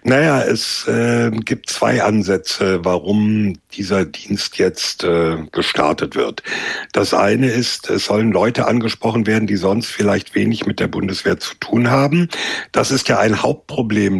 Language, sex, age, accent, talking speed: German, male, 60-79, German, 150 wpm